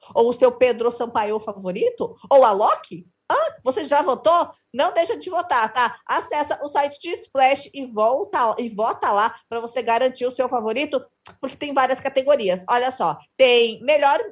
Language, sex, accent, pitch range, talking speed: Portuguese, female, Brazilian, 245-310 Hz, 175 wpm